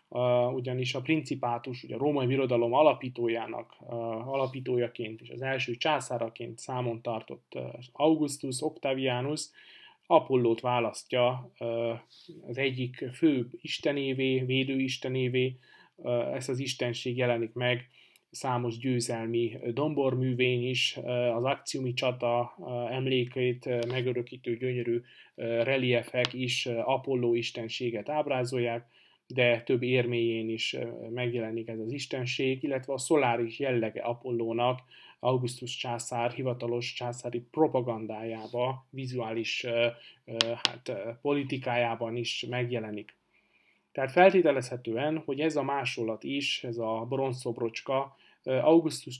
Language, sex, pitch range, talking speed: Hungarian, male, 120-130 Hz, 105 wpm